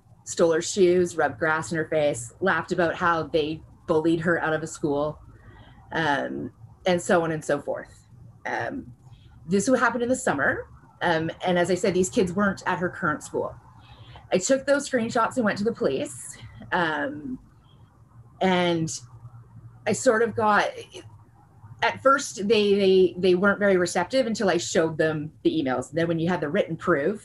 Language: English